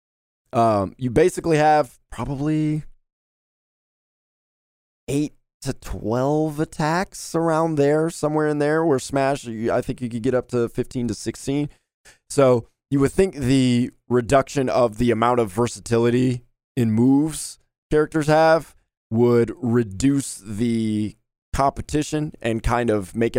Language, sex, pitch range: English, male, 100-140 Hz